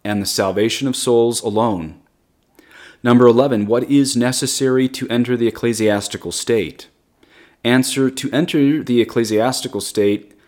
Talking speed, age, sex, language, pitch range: 125 wpm, 30-49, male, English, 105-130 Hz